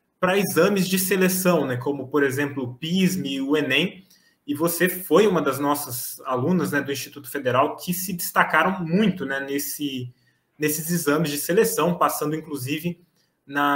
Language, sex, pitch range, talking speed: Portuguese, male, 150-185 Hz, 160 wpm